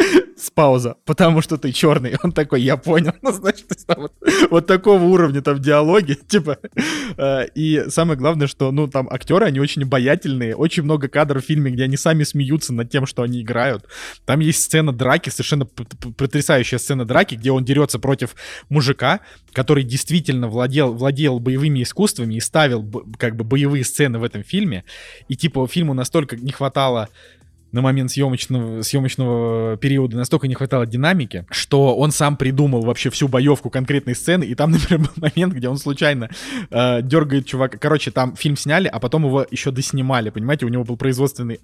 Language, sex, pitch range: Russian, male, 130-155 Hz